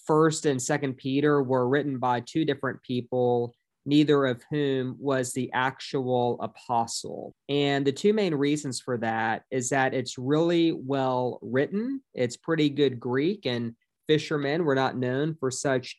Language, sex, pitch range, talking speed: English, male, 125-150 Hz, 155 wpm